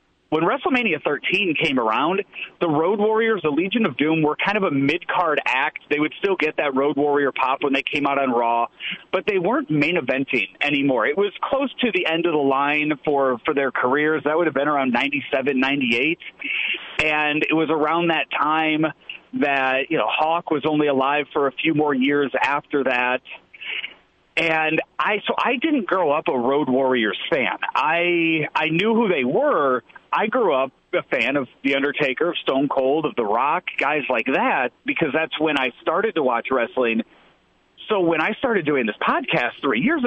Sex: male